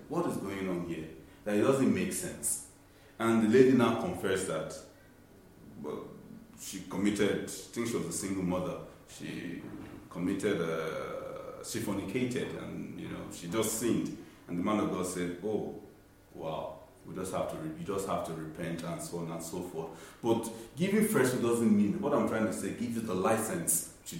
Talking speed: 195 wpm